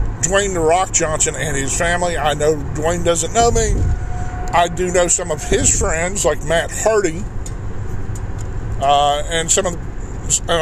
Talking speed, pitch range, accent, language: 160 wpm, 110-150 Hz, American, English